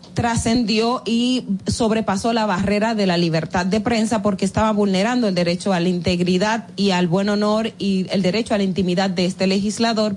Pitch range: 190-235 Hz